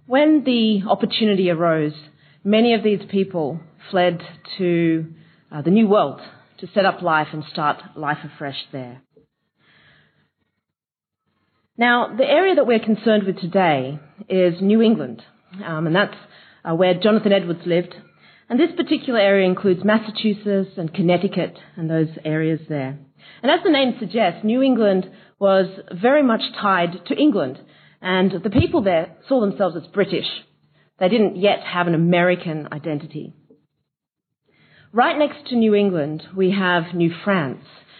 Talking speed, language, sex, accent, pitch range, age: 145 wpm, English, female, Australian, 165-215 Hz, 40-59